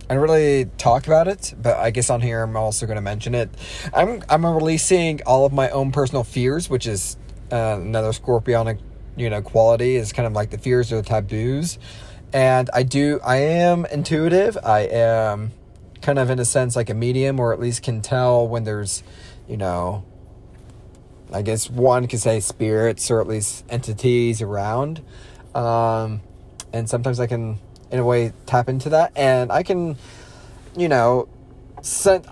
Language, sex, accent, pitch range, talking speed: English, male, American, 110-130 Hz, 180 wpm